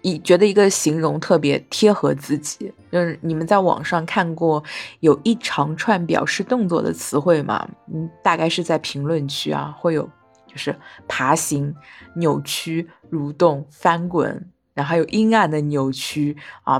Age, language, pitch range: 20-39, Chinese, 155-205 Hz